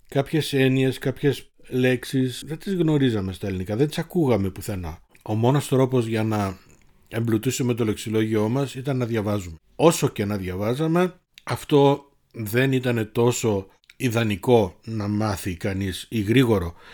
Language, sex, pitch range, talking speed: Greek, male, 105-135 Hz, 140 wpm